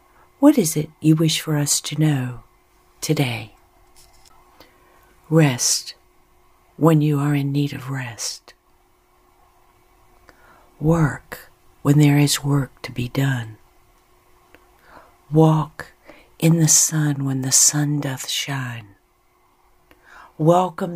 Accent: American